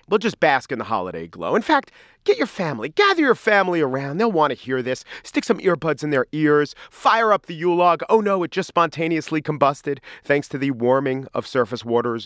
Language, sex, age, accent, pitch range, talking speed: English, male, 40-59, American, 130-195 Hz, 220 wpm